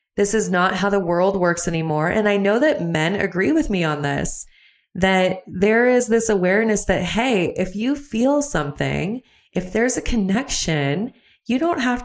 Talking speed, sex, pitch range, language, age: 180 wpm, female, 175-230 Hz, English, 20-39